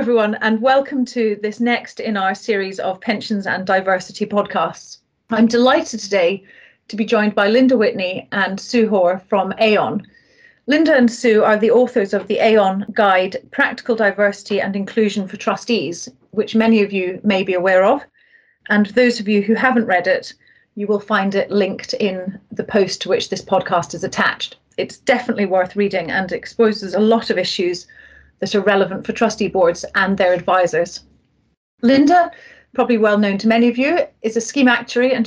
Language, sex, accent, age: English, female, British, 40-59